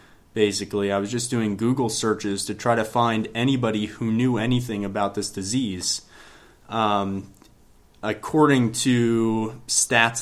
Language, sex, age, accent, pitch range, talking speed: English, male, 20-39, American, 105-120 Hz, 130 wpm